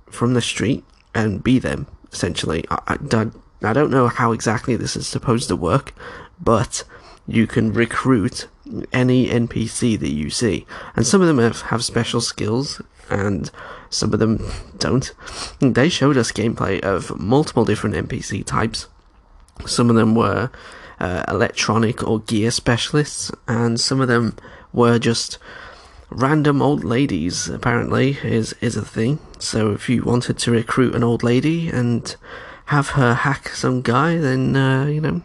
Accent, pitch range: British, 110-130 Hz